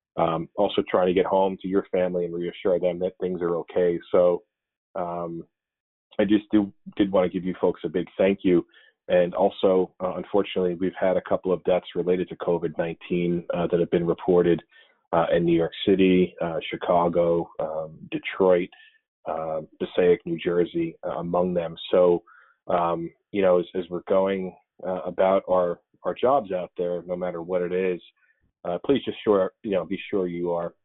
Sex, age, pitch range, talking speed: male, 30-49, 85-95 Hz, 185 wpm